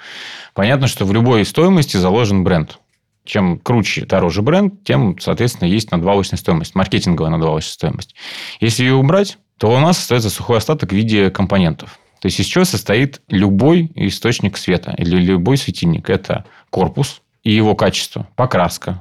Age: 30-49